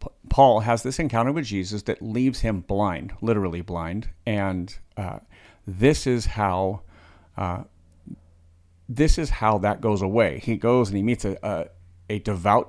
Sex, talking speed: male, 155 wpm